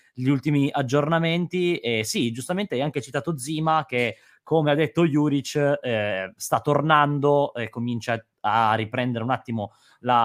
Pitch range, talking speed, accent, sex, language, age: 110-140 Hz, 145 wpm, native, male, Italian, 20-39